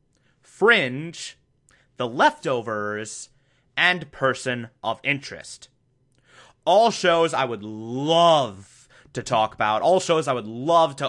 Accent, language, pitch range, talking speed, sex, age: American, English, 125-170 Hz, 115 wpm, male, 30-49